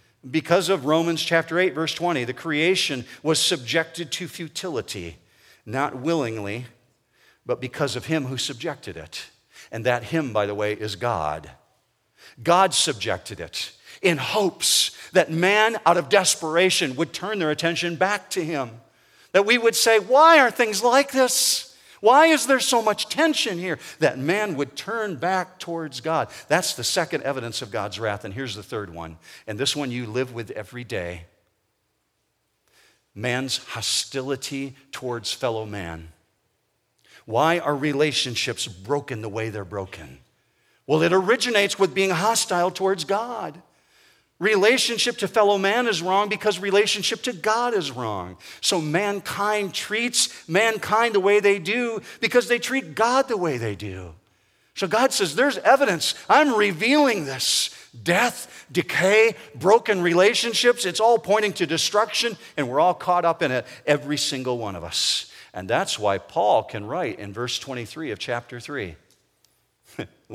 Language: English